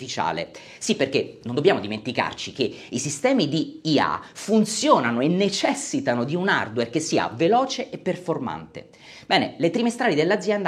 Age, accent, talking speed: 40-59, native, 140 wpm